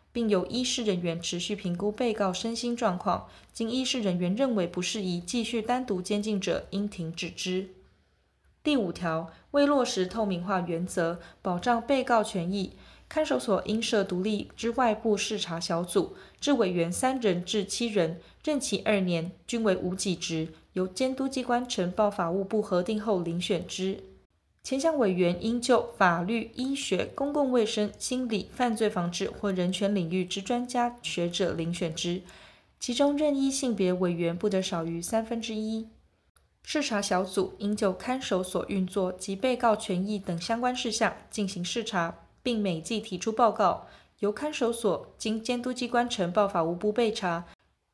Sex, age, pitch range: female, 20-39, 180-235 Hz